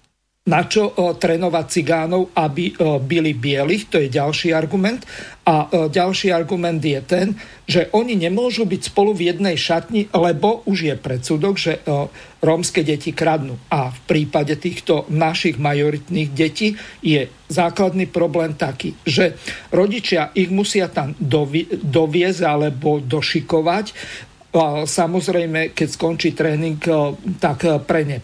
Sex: male